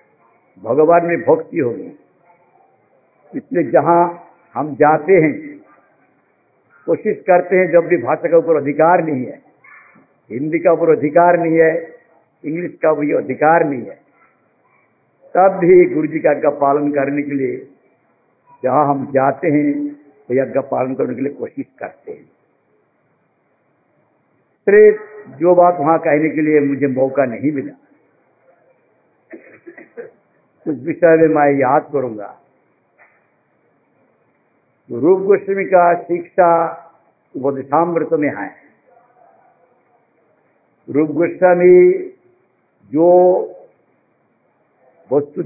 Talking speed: 110 wpm